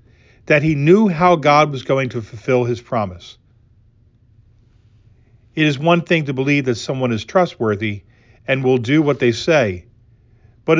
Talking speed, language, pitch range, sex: 155 wpm, English, 115-145 Hz, male